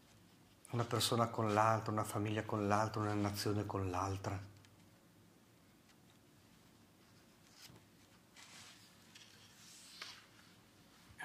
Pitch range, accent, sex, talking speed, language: 105-135 Hz, native, male, 70 wpm, Italian